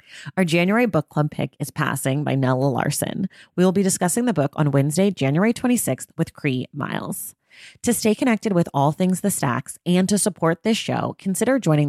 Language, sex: English, female